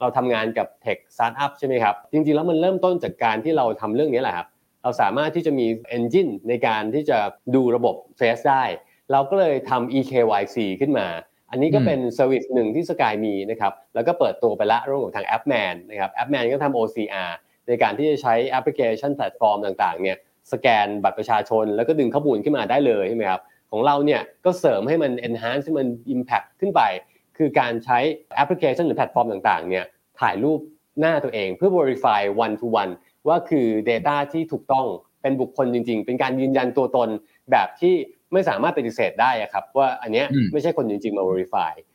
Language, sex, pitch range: Thai, male, 115-155 Hz